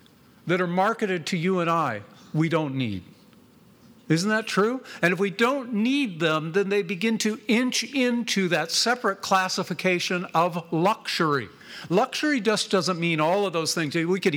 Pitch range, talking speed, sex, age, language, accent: 155-210 Hz, 165 wpm, male, 50-69, English, American